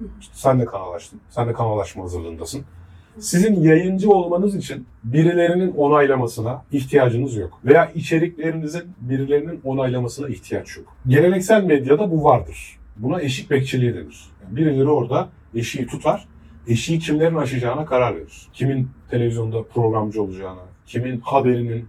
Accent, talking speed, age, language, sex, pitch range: native, 120 wpm, 40-59, Turkish, male, 110-150 Hz